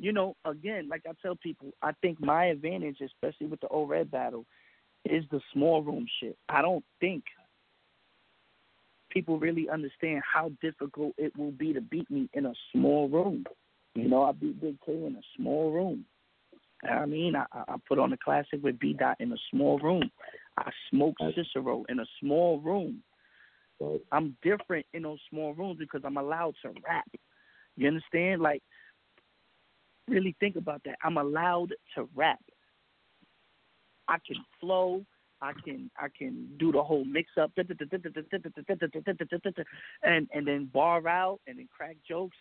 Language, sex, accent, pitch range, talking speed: English, male, American, 150-180 Hz, 160 wpm